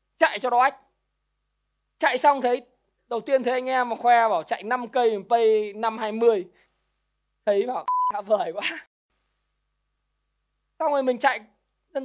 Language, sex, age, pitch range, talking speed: Vietnamese, male, 20-39, 215-275 Hz, 155 wpm